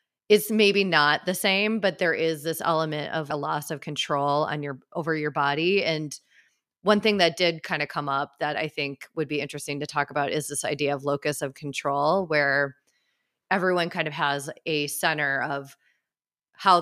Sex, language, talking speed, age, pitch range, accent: female, English, 195 wpm, 30-49, 145-175 Hz, American